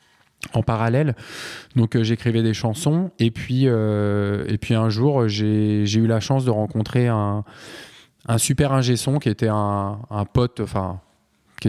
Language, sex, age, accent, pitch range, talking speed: French, male, 20-39, French, 110-130 Hz, 160 wpm